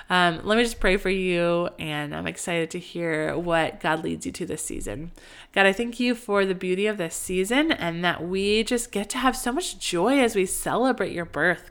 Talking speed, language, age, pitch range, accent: 225 wpm, English, 20-39, 170-210 Hz, American